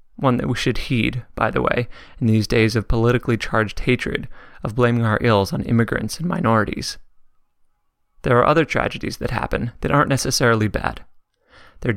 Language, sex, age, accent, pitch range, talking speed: English, male, 30-49, American, 110-125 Hz, 170 wpm